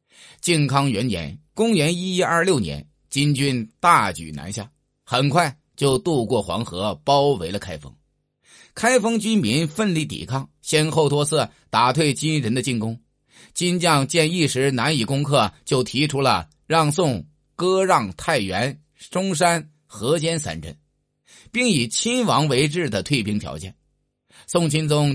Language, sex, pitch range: Chinese, male, 115-170 Hz